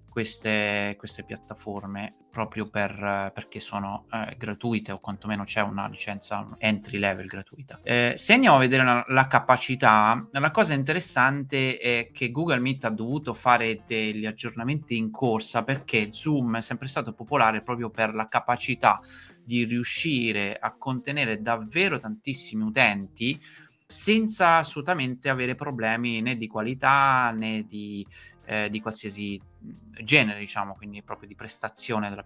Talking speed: 140 wpm